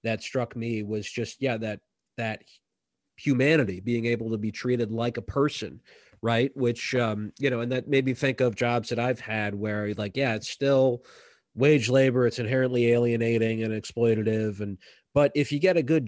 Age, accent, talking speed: 30-49, American, 190 wpm